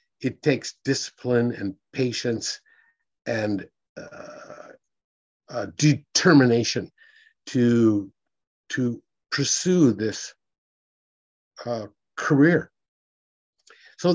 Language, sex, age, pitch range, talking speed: English, male, 50-69, 115-160 Hz, 70 wpm